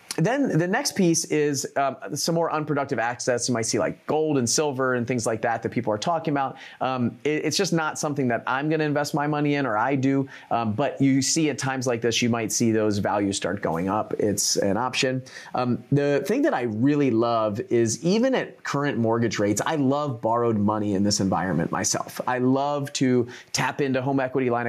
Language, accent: English, American